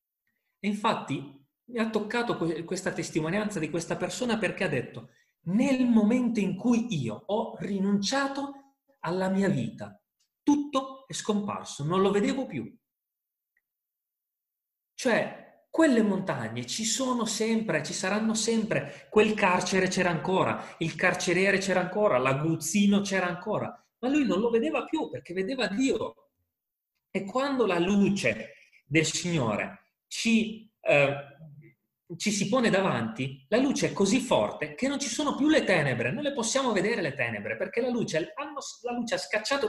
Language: Italian